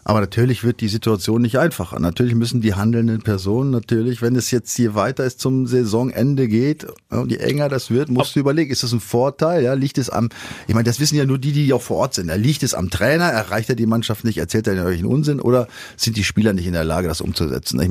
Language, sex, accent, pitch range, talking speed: German, male, German, 105-135 Hz, 250 wpm